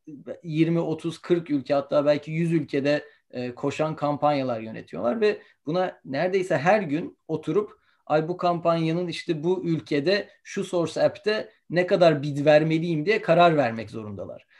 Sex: male